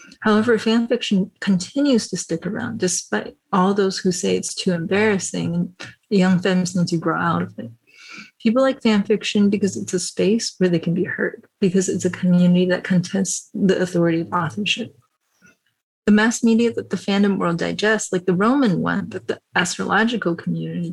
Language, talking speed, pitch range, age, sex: English, 180 wpm, 175-200 Hz, 30-49, female